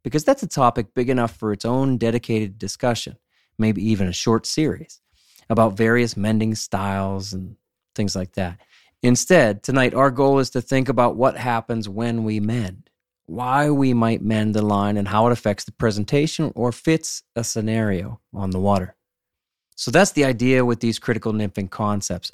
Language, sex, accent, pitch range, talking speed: English, male, American, 105-130 Hz, 175 wpm